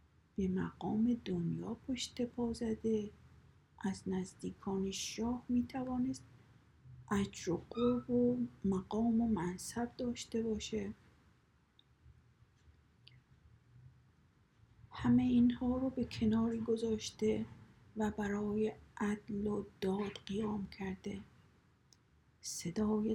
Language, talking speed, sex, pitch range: Persian, 80 wpm, female, 160-215 Hz